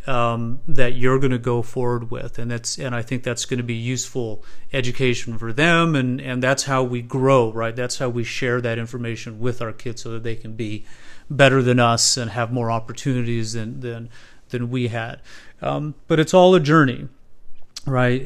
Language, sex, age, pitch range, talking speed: English, male, 40-59, 120-135 Hz, 215 wpm